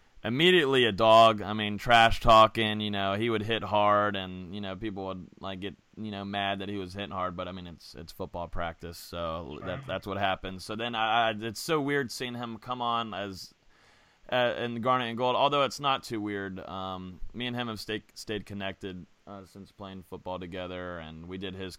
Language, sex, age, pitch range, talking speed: English, male, 20-39, 90-115 Hz, 215 wpm